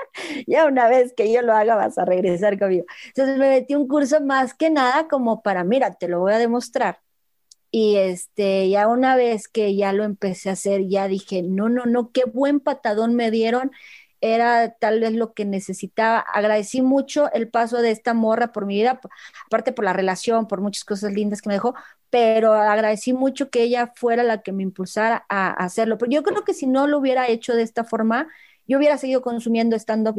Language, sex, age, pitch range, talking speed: Spanish, female, 30-49, 200-245 Hz, 210 wpm